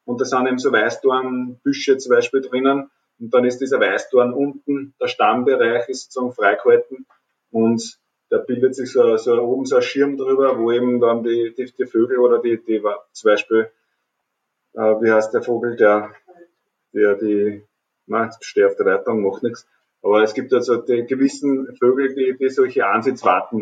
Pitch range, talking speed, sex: 110-175 Hz, 175 wpm, male